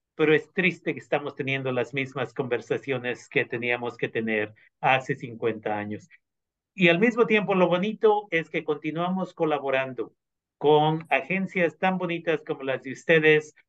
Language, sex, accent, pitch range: Spanish, male, Mexican, 140-170 Hz